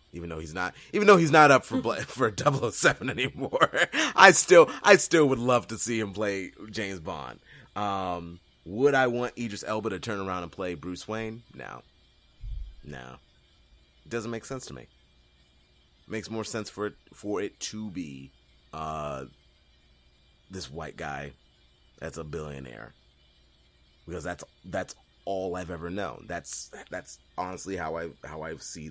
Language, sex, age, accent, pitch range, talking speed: English, male, 30-49, American, 70-100 Hz, 170 wpm